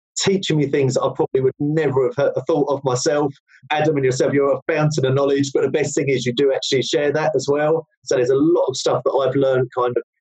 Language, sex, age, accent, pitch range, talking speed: English, male, 30-49, British, 130-170 Hz, 255 wpm